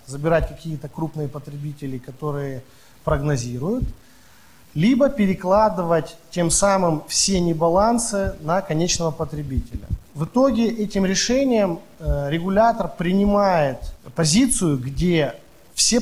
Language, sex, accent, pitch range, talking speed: Ukrainian, male, native, 150-200 Hz, 90 wpm